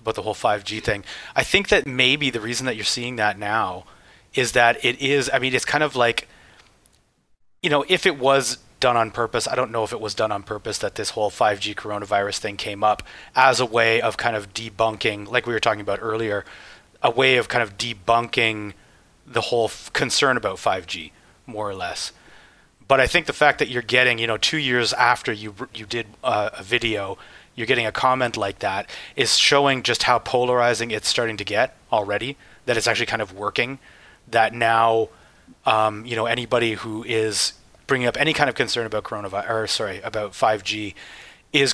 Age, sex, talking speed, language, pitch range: 30-49, male, 200 wpm, English, 105-130 Hz